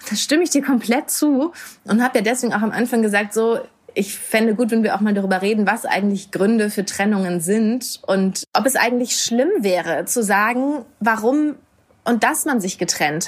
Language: German